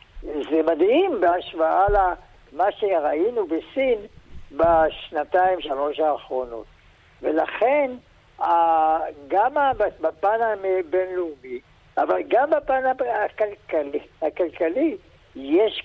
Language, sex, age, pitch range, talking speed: Hebrew, male, 60-79, 160-230 Hz, 70 wpm